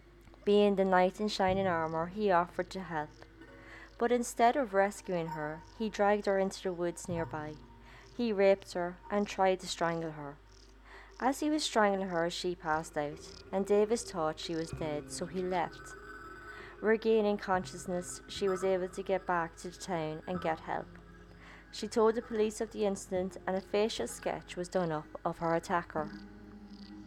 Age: 20-39